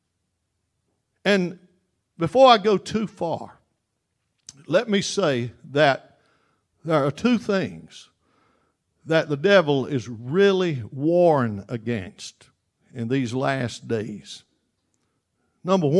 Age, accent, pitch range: 60-79, American, 125-175 Hz